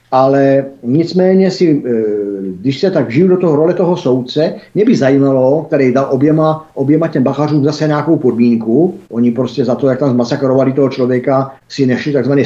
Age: 50-69